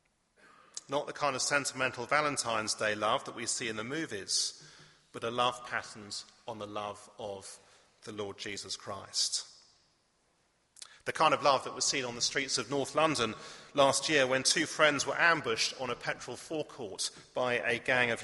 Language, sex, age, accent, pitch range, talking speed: English, male, 40-59, British, 115-150 Hz, 180 wpm